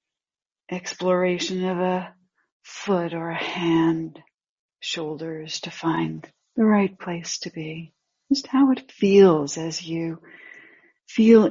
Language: English